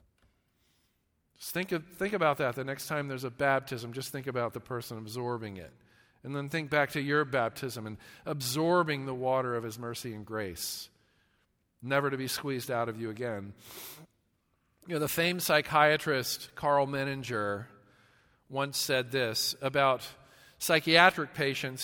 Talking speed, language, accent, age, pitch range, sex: 150 wpm, English, American, 40-59, 125-165 Hz, male